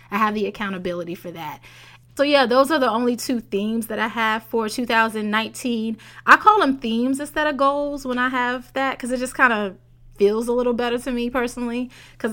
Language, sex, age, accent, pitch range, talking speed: English, female, 20-39, American, 205-245 Hz, 210 wpm